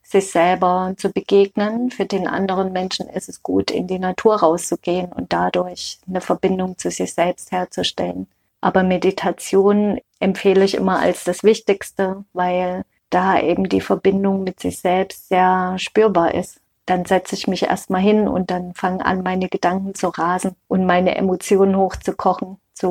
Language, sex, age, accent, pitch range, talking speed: German, female, 30-49, German, 180-195 Hz, 160 wpm